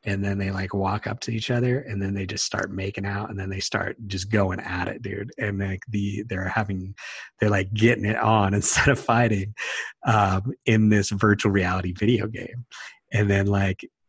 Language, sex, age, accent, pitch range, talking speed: English, male, 30-49, American, 100-115 Hz, 205 wpm